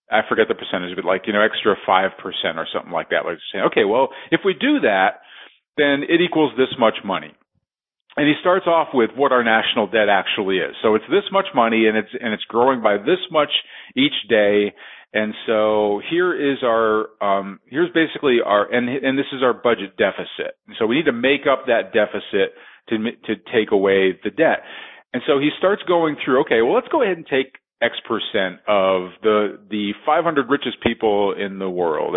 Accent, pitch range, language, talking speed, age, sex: American, 115-180 Hz, English, 205 wpm, 40-59, male